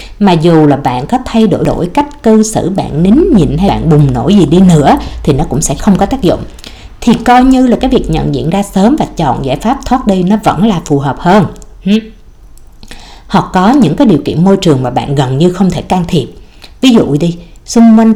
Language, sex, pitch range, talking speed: Vietnamese, female, 150-215 Hz, 240 wpm